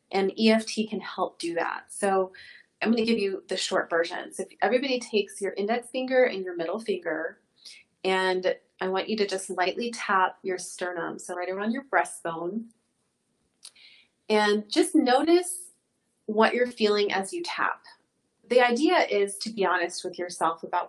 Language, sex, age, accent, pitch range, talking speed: English, female, 30-49, American, 185-230 Hz, 165 wpm